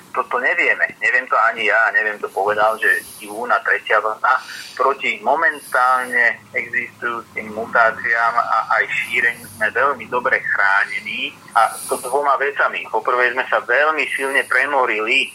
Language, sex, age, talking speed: Slovak, male, 30-49, 135 wpm